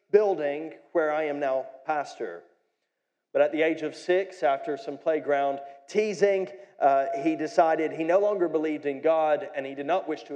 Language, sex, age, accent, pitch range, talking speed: English, male, 40-59, American, 115-155 Hz, 180 wpm